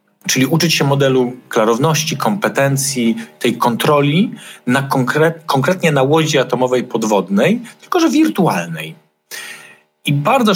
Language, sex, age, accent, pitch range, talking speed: Polish, male, 40-59, native, 110-165 Hz, 115 wpm